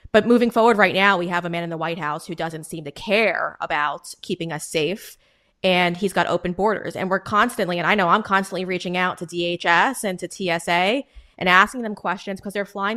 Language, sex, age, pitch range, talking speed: English, female, 20-39, 180-225 Hz, 225 wpm